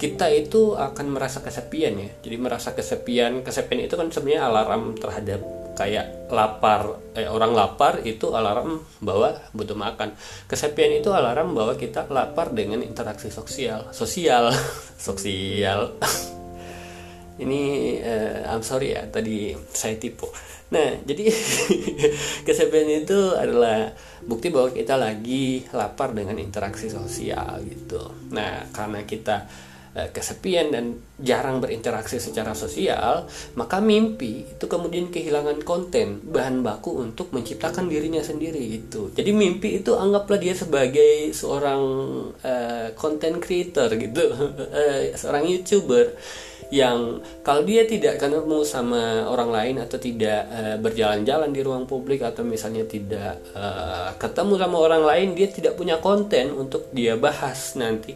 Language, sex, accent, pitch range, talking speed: Indonesian, male, native, 110-180 Hz, 130 wpm